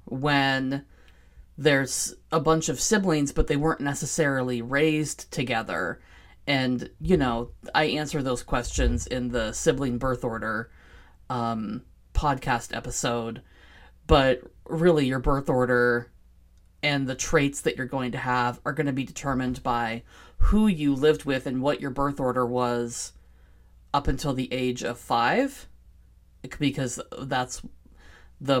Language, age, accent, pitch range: English, 30-49, American, 120-150 Hz